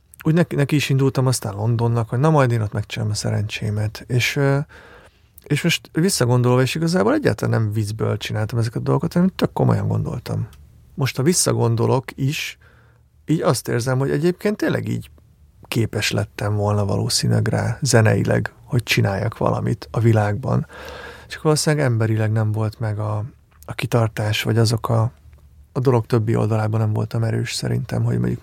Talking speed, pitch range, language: 160 wpm, 110-130 Hz, Hungarian